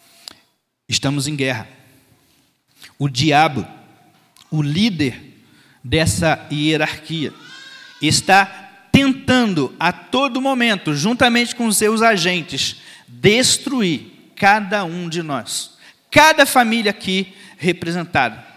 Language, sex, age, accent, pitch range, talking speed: Portuguese, male, 40-59, Brazilian, 155-230 Hz, 85 wpm